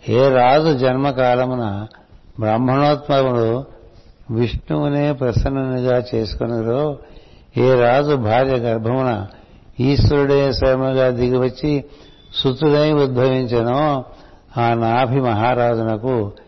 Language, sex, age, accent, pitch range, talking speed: Telugu, male, 60-79, native, 110-140 Hz, 70 wpm